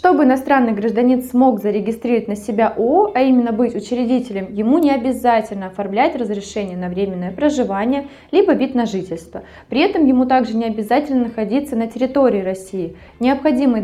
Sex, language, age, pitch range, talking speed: female, Russian, 20-39, 200-255 Hz, 150 wpm